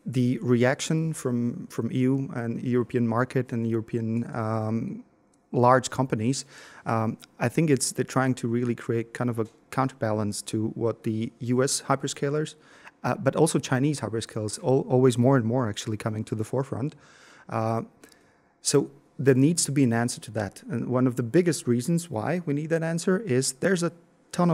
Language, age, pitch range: Slovak, 30-49, 120-140 Hz